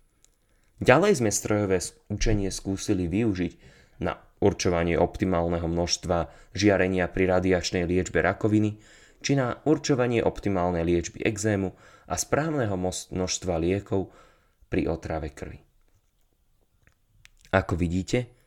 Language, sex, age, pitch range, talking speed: Slovak, male, 20-39, 90-115 Hz, 95 wpm